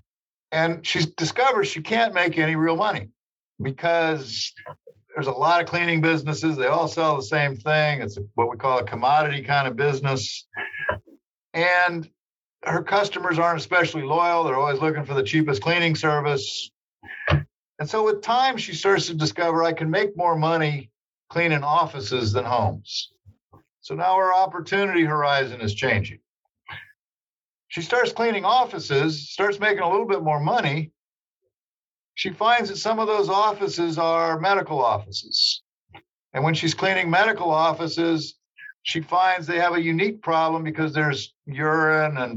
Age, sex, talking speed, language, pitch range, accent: 50-69, male, 150 wpm, English, 145-175 Hz, American